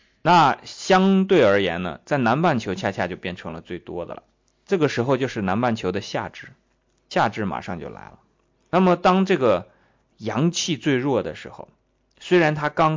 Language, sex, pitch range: Chinese, male, 95-145 Hz